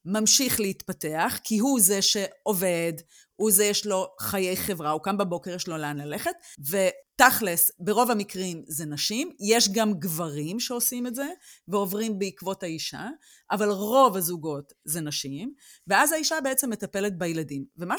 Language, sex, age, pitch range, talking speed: Hebrew, female, 30-49, 175-250 Hz, 145 wpm